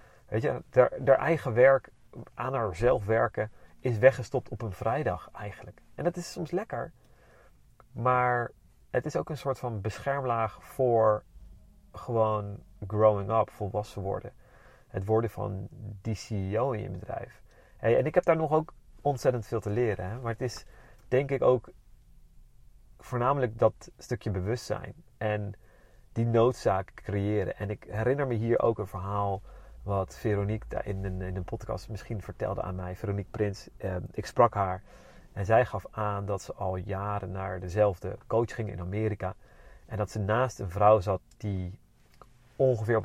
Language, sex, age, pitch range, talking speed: Dutch, male, 30-49, 100-120 Hz, 160 wpm